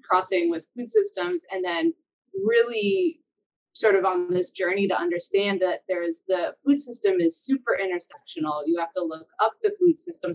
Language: English